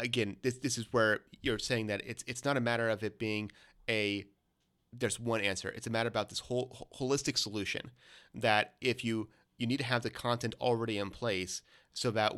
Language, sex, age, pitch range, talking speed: English, male, 30-49, 105-125 Hz, 205 wpm